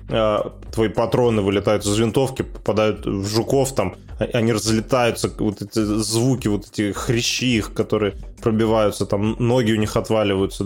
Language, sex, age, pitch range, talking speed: Russian, male, 20-39, 105-120 Hz, 140 wpm